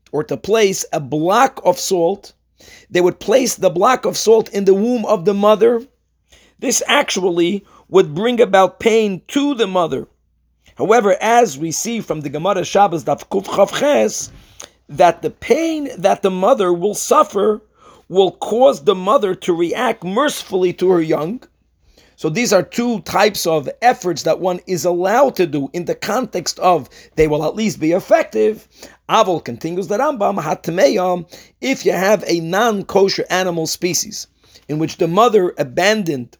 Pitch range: 170-220 Hz